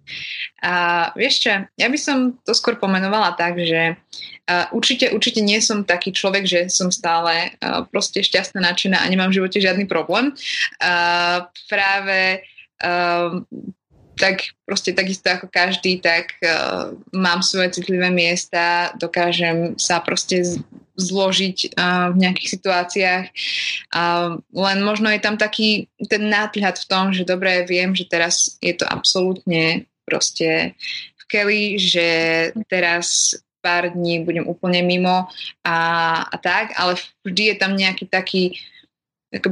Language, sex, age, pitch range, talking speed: Slovak, female, 20-39, 175-205 Hz, 135 wpm